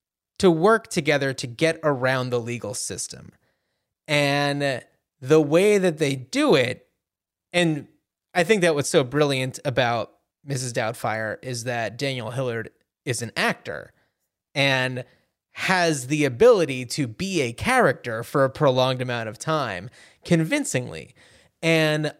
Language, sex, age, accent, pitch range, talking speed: English, male, 30-49, American, 125-160 Hz, 130 wpm